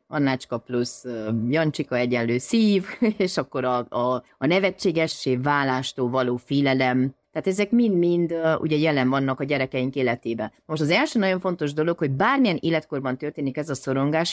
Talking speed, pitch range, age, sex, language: 150 wpm, 125-170 Hz, 30-49, female, Hungarian